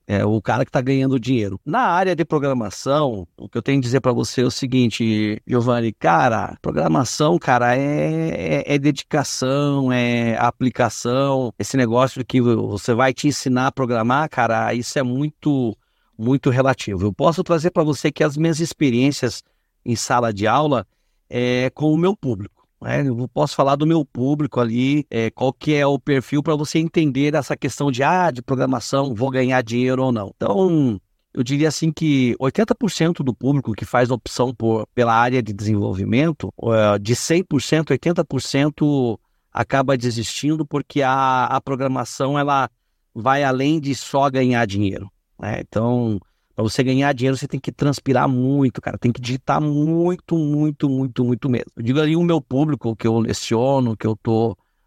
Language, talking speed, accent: Portuguese, 170 wpm, Brazilian